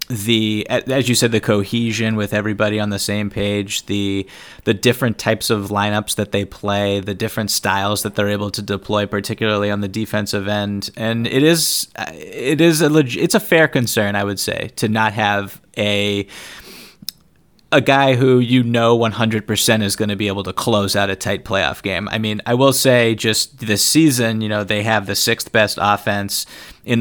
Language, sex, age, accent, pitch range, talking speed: English, male, 20-39, American, 105-120 Hz, 195 wpm